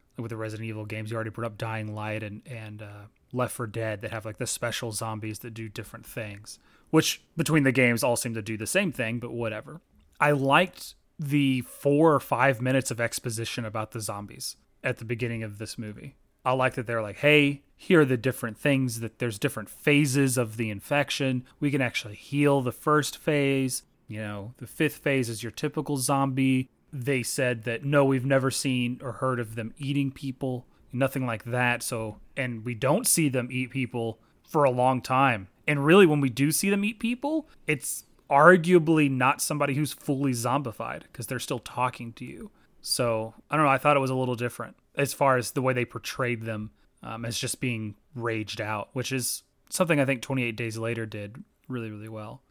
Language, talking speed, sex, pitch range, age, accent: English, 205 wpm, male, 115-140 Hz, 30-49, American